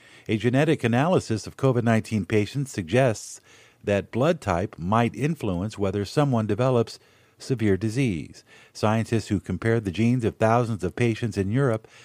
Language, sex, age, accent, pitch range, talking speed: English, male, 50-69, American, 100-125 Hz, 140 wpm